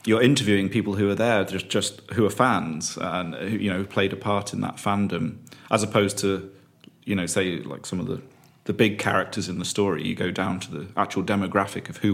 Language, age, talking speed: English, 30-49, 225 wpm